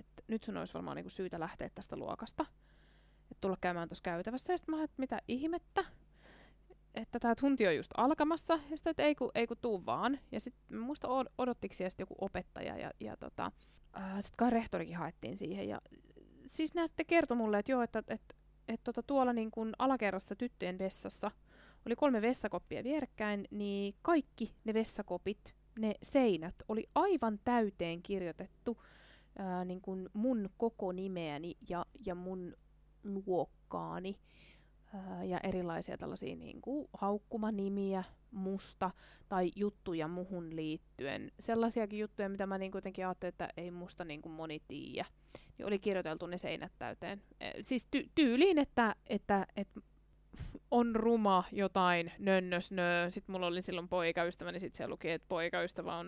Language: Finnish